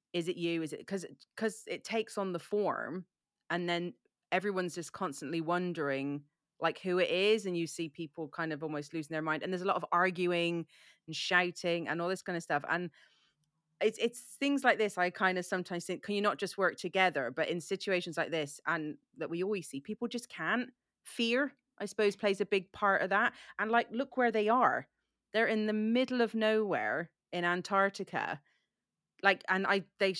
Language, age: English, 30-49